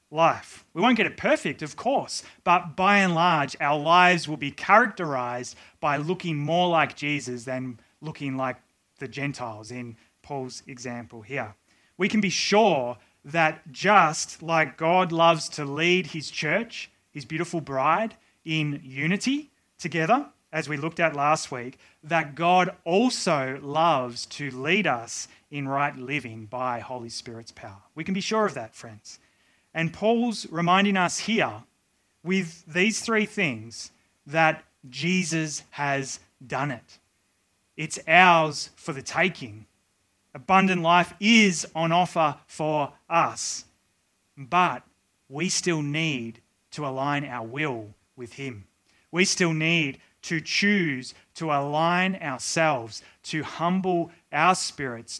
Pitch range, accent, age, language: 130-175 Hz, Australian, 30-49, English